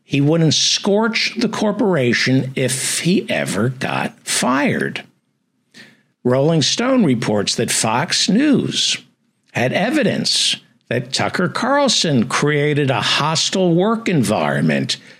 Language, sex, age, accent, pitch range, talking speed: English, male, 60-79, American, 135-215 Hz, 105 wpm